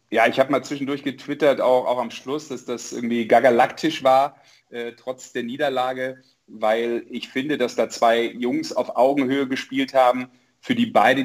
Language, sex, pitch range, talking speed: German, male, 110-130 Hz, 175 wpm